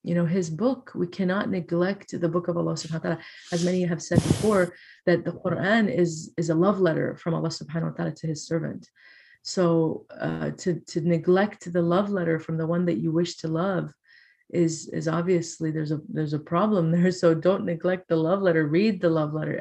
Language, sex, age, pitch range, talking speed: English, female, 30-49, 165-185 Hz, 215 wpm